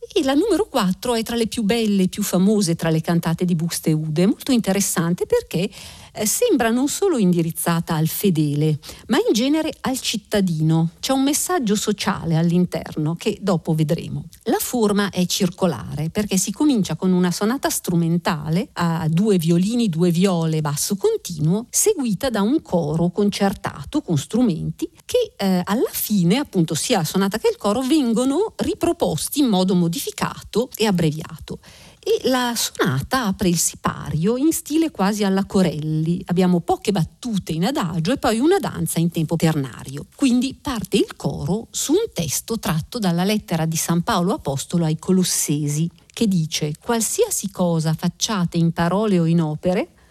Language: Italian